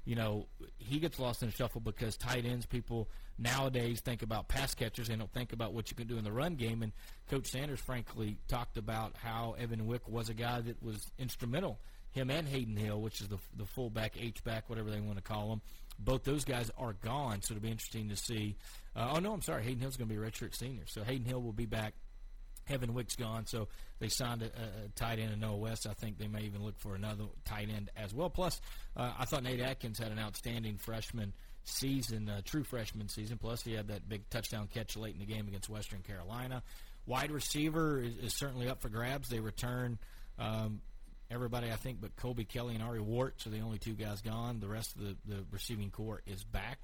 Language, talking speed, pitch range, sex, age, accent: English, 235 wpm, 105-125 Hz, male, 40-59, American